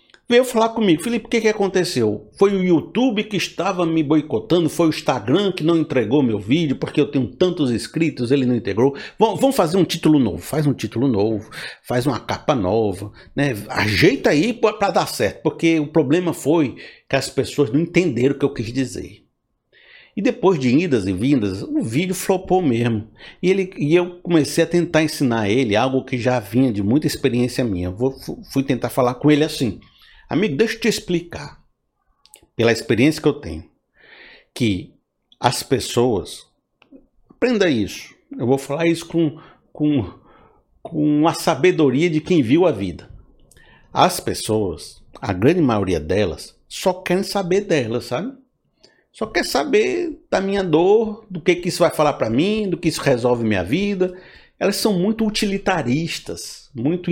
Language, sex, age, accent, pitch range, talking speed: Portuguese, male, 60-79, Brazilian, 130-185 Hz, 170 wpm